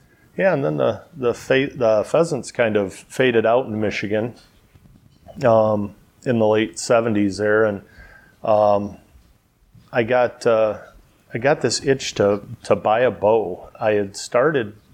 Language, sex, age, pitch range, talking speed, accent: English, male, 30-49, 100-115 Hz, 150 wpm, American